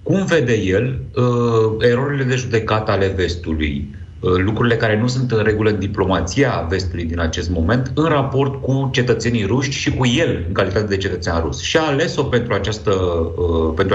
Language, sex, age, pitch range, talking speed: Romanian, male, 30-49, 95-125 Hz, 170 wpm